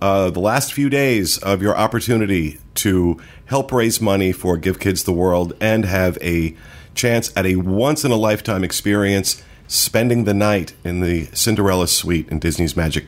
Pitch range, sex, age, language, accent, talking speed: 85-105 Hz, male, 40-59, English, American, 165 wpm